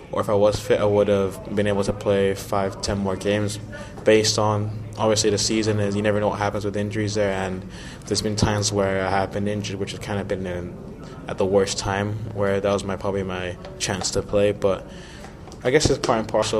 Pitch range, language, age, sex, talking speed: 100-105 Hz, English, 20-39, male, 235 wpm